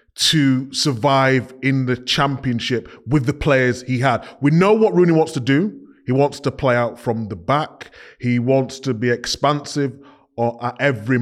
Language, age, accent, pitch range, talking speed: English, 20-39, British, 125-150 Hz, 170 wpm